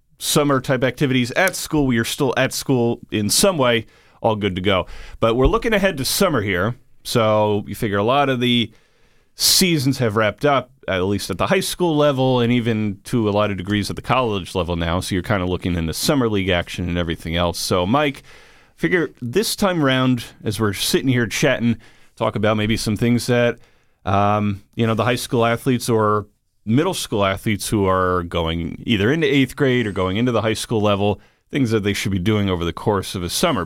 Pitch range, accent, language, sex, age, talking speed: 100-125 Hz, American, English, male, 40-59, 215 wpm